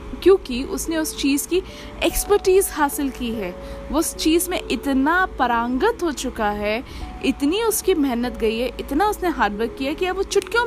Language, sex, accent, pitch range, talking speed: Hindi, female, native, 245-325 Hz, 180 wpm